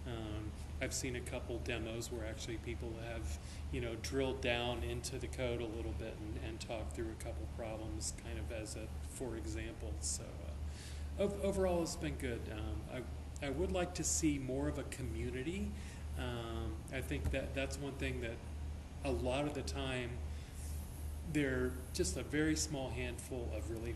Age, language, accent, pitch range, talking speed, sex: 30-49, English, American, 75-120 Hz, 180 wpm, male